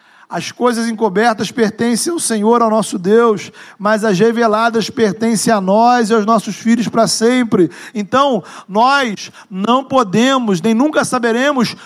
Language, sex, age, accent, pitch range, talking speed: Portuguese, male, 40-59, Brazilian, 200-250 Hz, 140 wpm